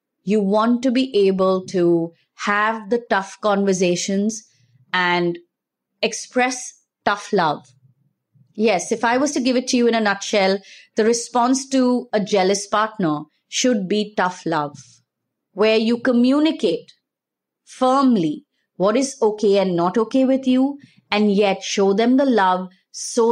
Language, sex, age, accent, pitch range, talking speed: English, female, 30-49, Indian, 180-235 Hz, 140 wpm